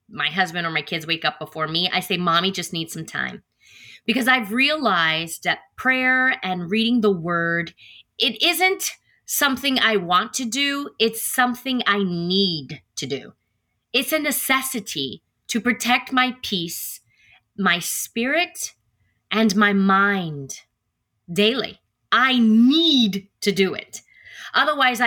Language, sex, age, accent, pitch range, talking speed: English, female, 30-49, American, 180-250 Hz, 135 wpm